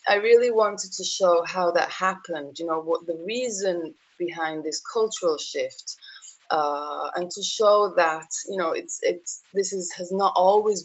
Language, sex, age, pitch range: French, female, 20-39, 155-195 Hz